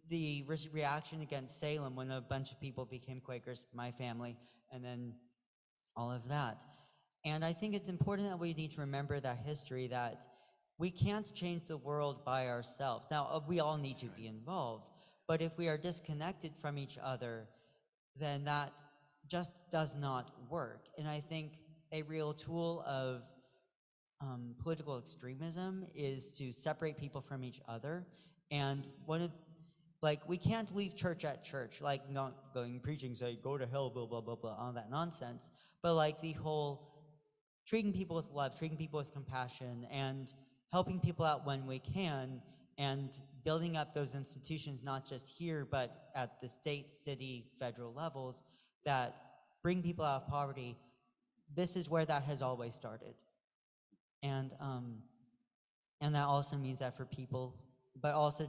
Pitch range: 130-160 Hz